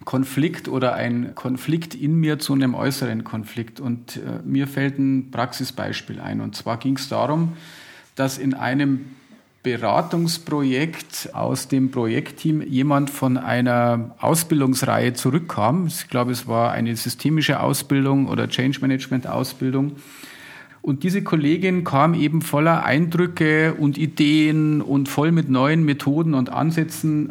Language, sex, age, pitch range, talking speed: German, male, 40-59, 130-155 Hz, 130 wpm